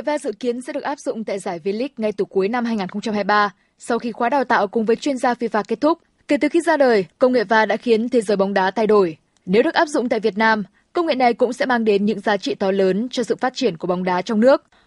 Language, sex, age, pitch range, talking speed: Vietnamese, female, 20-39, 210-270 Hz, 285 wpm